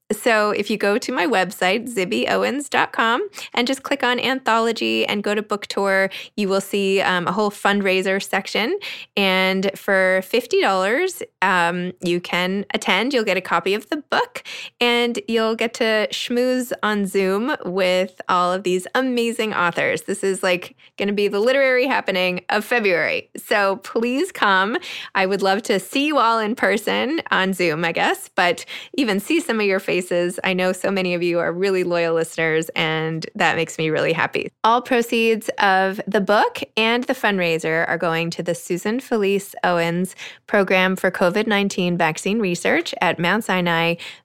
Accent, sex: American, female